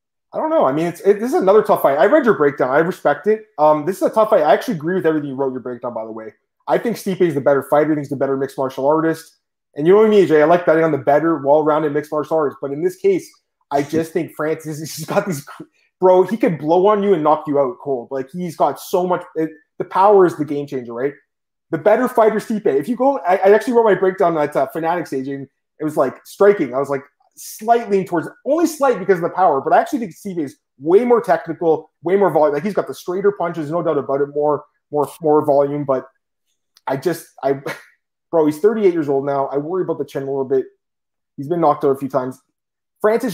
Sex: male